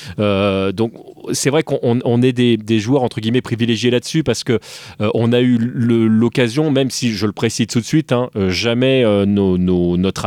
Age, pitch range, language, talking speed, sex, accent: 30-49, 110-145 Hz, French, 210 wpm, male, French